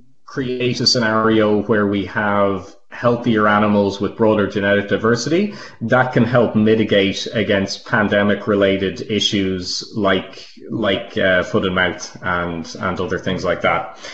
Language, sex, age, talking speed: English, male, 30-49, 130 wpm